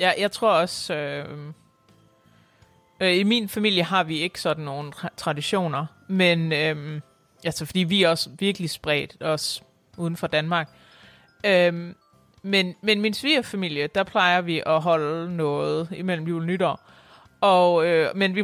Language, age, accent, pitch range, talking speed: Danish, 30-49, native, 160-205 Hz, 155 wpm